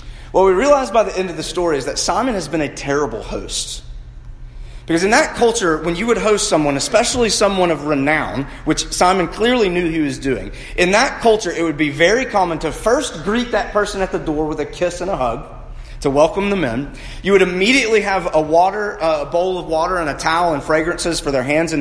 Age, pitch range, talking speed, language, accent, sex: 30-49, 135-195 Hz, 225 wpm, English, American, male